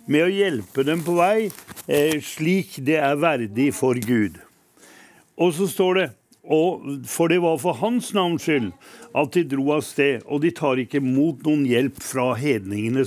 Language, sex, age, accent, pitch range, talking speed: English, male, 60-79, Swedish, 135-175 Hz, 175 wpm